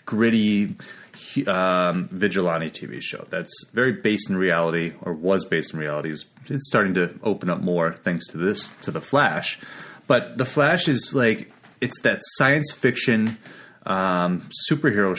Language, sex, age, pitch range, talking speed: English, male, 30-49, 90-120 Hz, 150 wpm